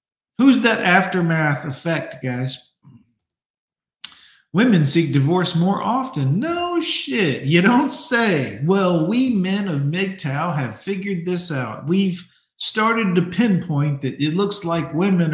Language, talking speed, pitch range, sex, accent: English, 130 wpm, 140-205 Hz, male, American